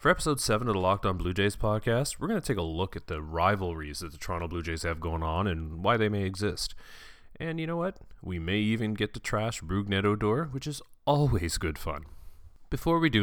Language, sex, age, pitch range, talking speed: English, male, 30-49, 85-110 Hz, 235 wpm